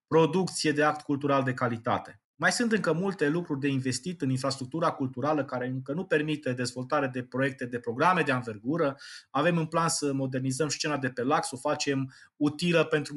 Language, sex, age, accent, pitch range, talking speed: Romanian, male, 20-39, native, 135-185 Hz, 185 wpm